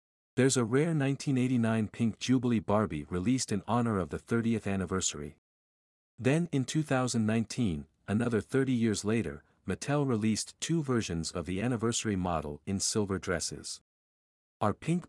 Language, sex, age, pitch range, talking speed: English, male, 50-69, 90-125 Hz, 135 wpm